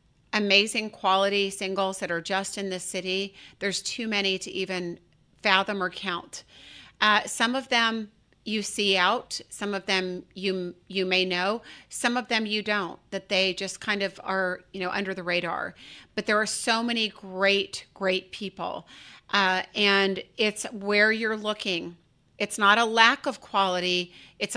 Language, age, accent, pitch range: English, 40-59, American, 180-210 Hz